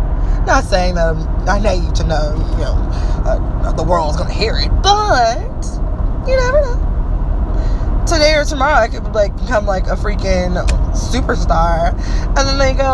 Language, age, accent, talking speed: English, 20-39, American, 165 wpm